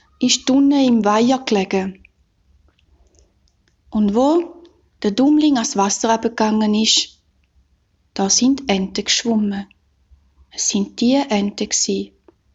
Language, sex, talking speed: German, female, 105 wpm